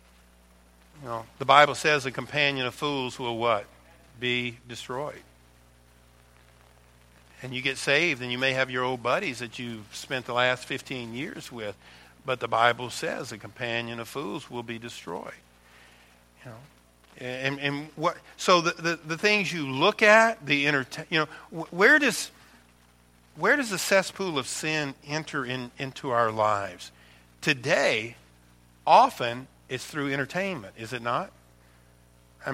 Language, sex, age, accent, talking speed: English, male, 50-69, American, 150 wpm